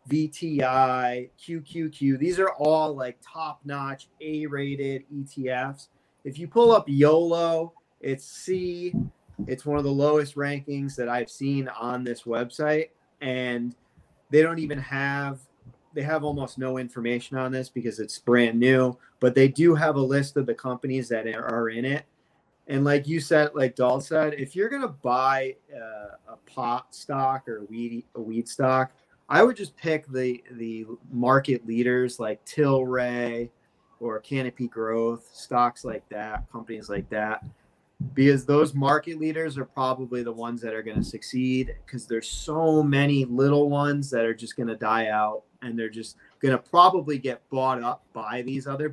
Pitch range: 120-145 Hz